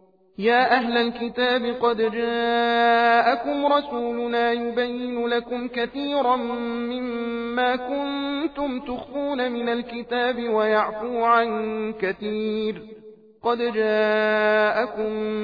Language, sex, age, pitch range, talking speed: Persian, male, 40-59, 215-250 Hz, 75 wpm